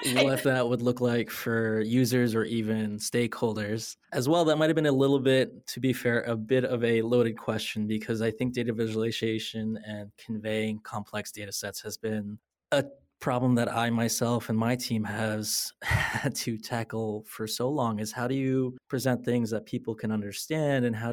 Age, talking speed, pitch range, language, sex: 20-39, 190 wpm, 110-125 Hz, English, male